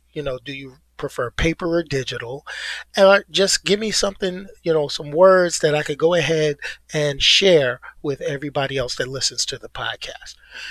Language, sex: English, male